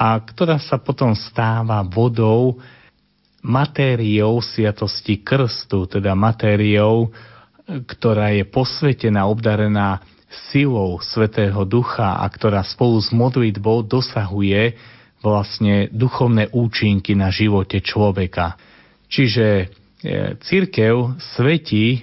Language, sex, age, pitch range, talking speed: Slovak, male, 30-49, 100-125 Hz, 95 wpm